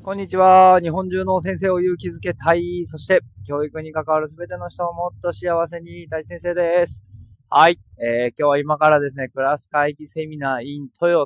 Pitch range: 110-175 Hz